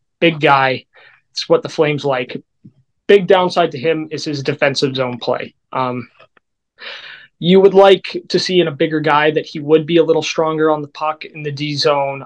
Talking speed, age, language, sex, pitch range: 195 wpm, 20-39, English, male, 145-175 Hz